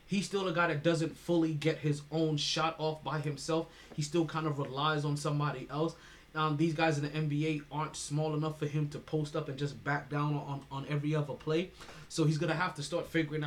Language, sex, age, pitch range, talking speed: English, male, 20-39, 130-160 Hz, 230 wpm